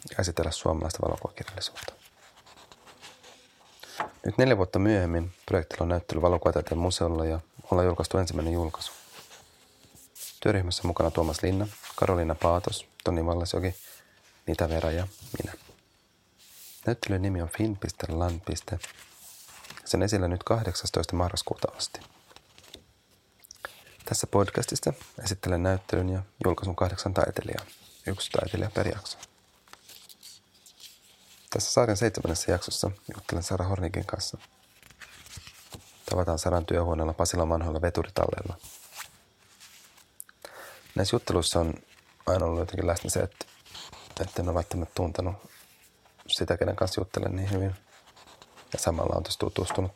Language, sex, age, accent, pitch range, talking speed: Finnish, male, 30-49, native, 85-100 Hz, 105 wpm